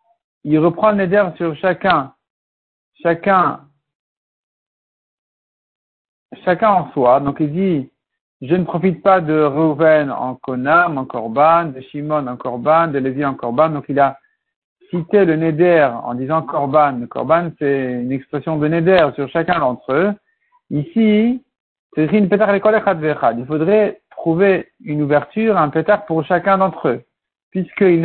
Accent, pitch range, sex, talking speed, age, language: French, 140-195 Hz, male, 140 wpm, 50-69, French